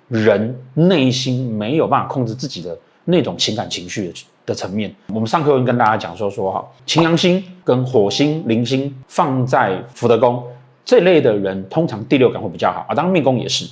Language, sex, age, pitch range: Chinese, male, 30-49, 115-160 Hz